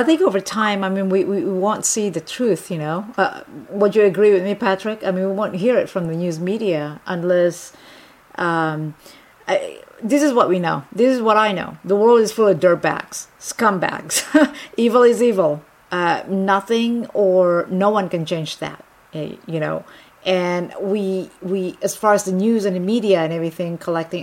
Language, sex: English, female